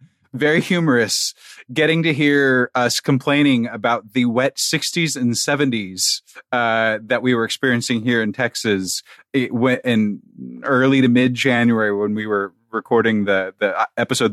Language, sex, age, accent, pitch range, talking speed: English, male, 30-49, American, 110-145 Hz, 140 wpm